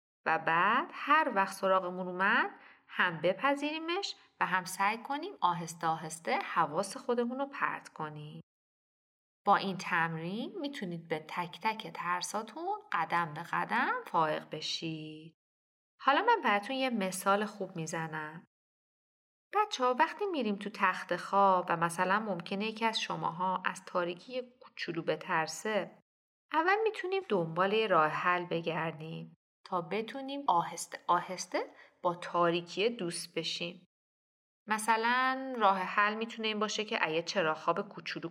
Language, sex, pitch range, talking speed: Persian, female, 170-240 Hz, 125 wpm